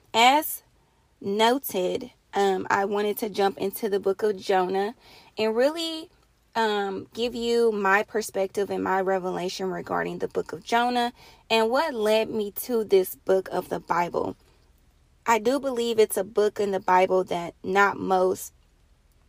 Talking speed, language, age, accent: 150 wpm, English, 20-39, American